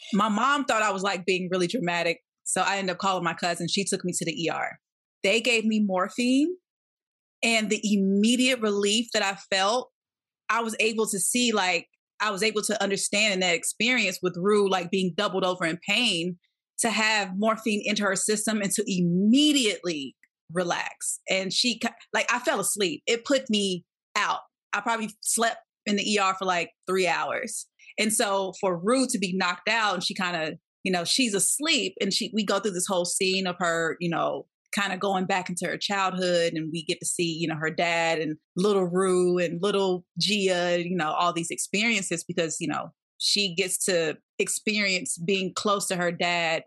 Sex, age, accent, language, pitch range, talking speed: female, 30-49, American, English, 175-220 Hz, 195 wpm